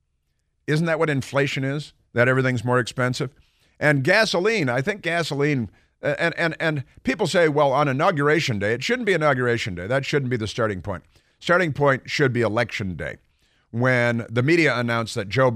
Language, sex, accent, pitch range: English, male, American, 105-140 Hz